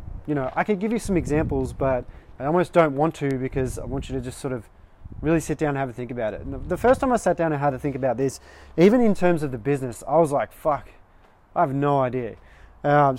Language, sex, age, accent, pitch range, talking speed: English, male, 20-39, Australian, 115-155 Hz, 265 wpm